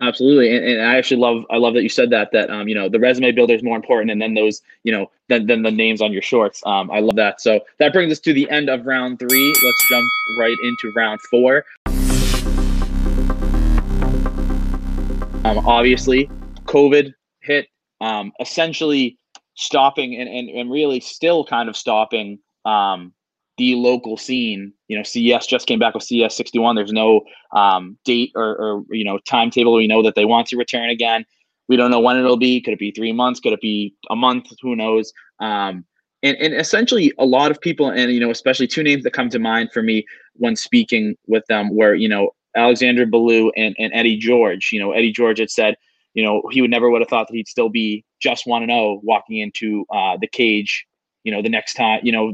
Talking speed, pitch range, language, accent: 210 wpm, 110-125 Hz, English, American